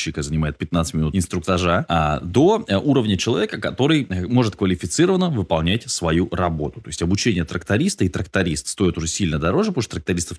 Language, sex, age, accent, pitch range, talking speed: Russian, male, 20-39, native, 85-115 Hz, 155 wpm